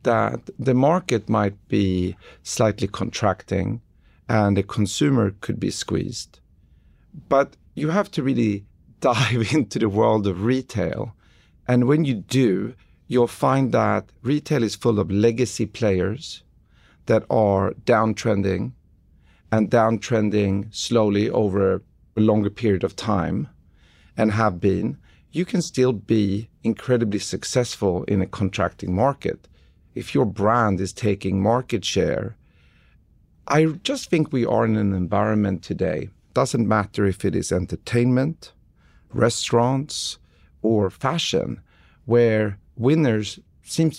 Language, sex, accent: English, male, Swedish